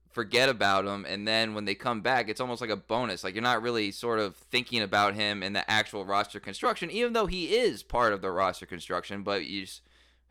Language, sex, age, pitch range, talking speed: English, male, 20-39, 85-110 Hz, 235 wpm